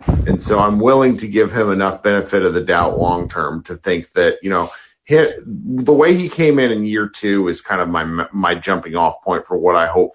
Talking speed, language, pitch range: 235 wpm, English, 95-135 Hz